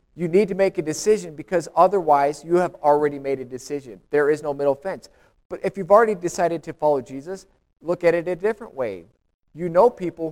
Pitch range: 155-205 Hz